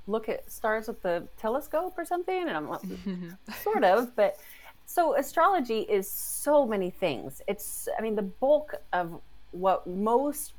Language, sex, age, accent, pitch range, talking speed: English, female, 30-49, American, 155-205 Hz, 155 wpm